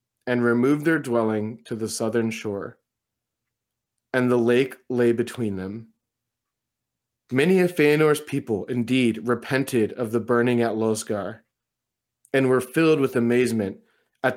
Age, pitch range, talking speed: 30-49, 110-130 Hz, 130 wpm